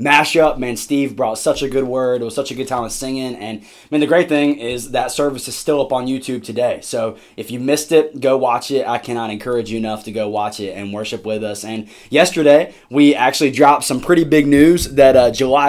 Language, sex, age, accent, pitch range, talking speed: English, male, 20-39, American, 115-145 Hz, 250 wpm